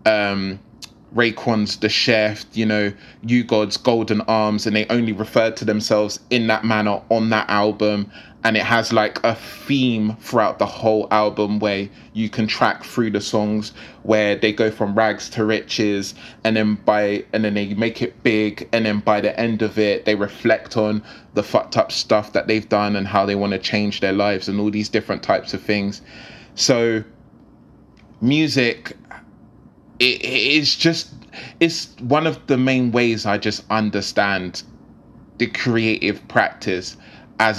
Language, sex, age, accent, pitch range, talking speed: English, male, 20-39, British, 105-115 Hz, 165 wpm